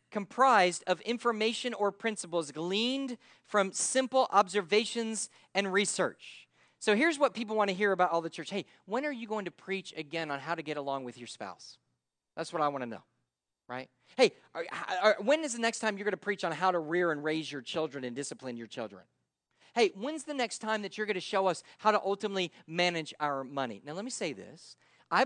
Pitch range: 165-220 Hz